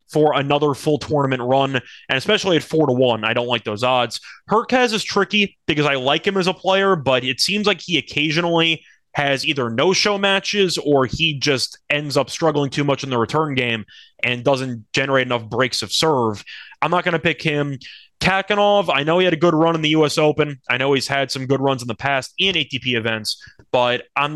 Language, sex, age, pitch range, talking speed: English, male, 20-39, 125-160 Hz, 215 wpm